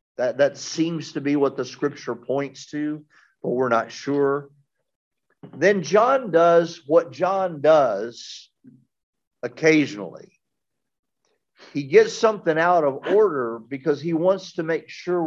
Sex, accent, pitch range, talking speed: male, American, 130-165 Hz, 130 wpm